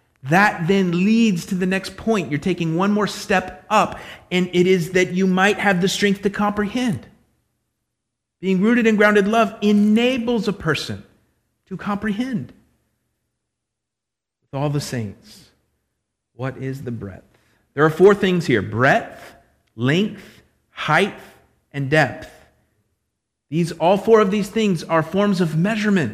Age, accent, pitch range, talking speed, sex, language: 50-69, American, 160-215 Hz, 140 wpm, male, English